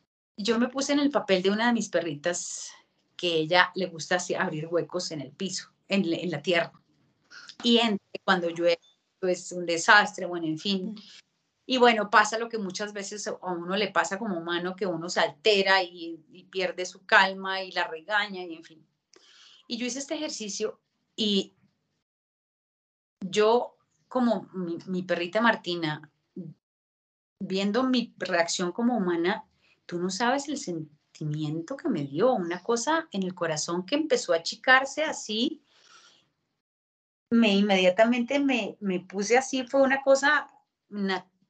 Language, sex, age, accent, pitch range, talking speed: Spanish, female, 30-49, Colombian, 175-230 Hz, 160 wpm